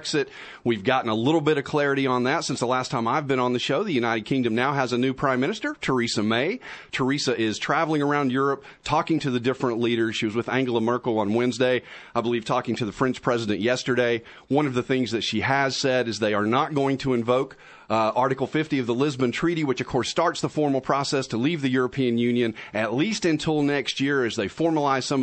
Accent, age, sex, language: American, 40-59, male, English